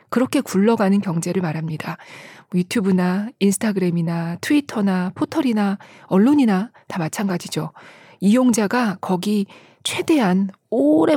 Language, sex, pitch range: Korean, female, 180-240 Hz